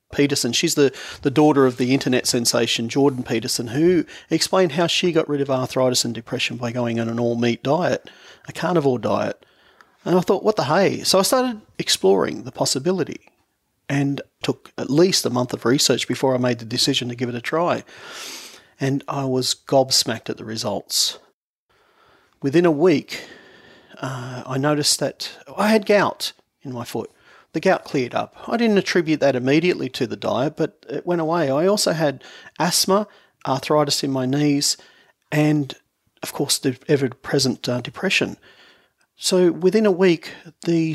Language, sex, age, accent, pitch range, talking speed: English, male, 40-59, Australian, 125-160 Hz, 170 wpm